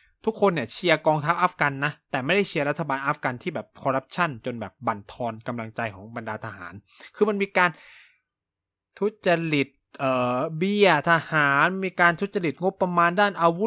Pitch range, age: 130-200 Hz, 20-39